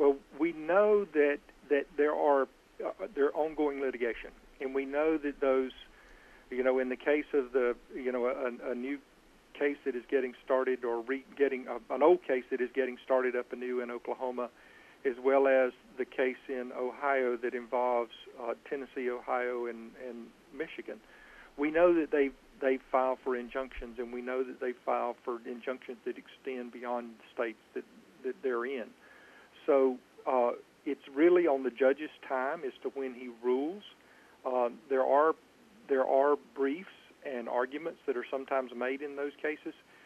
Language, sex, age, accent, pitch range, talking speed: English, male, 50-69, American, 125-140 Hz, 175 wpm